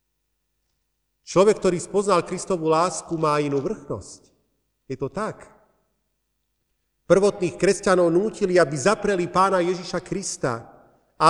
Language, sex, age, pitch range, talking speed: Slovak, male, 40-59, 120-175 Hz, 105 wpm